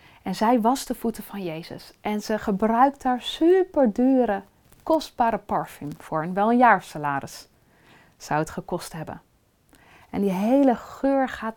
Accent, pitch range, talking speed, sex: Dutch, 185-225 Hz, 150 wpm, female